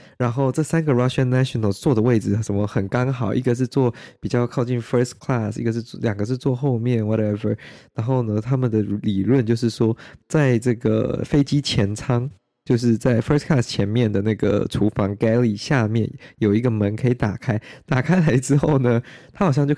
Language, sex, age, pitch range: Chinese, male, 20-39, 110-130 Hz